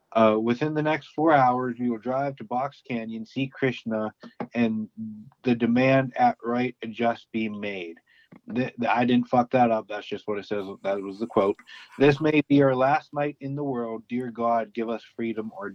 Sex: male